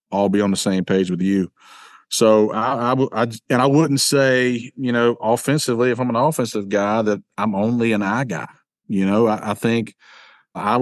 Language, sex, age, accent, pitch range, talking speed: English, male, 40-59, American, 100-120 Hz, 205 wpm